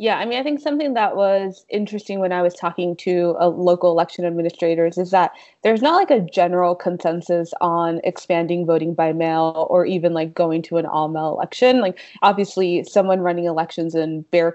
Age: 20-39